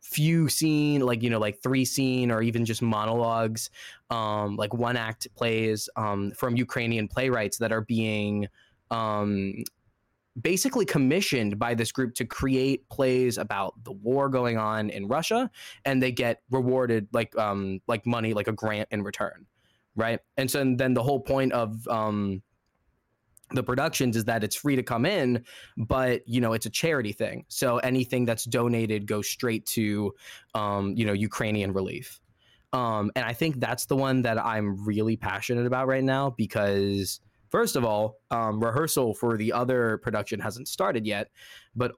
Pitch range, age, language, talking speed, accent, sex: 110-130 Hz, 20-39, English, 170 wpm, American, male